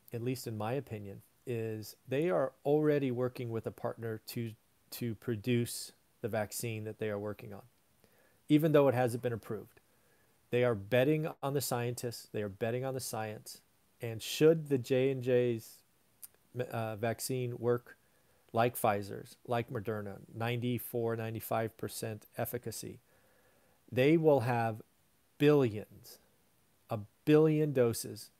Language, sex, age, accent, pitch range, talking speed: English, male, 40-59, American, 110-135 Hz, 130 wpm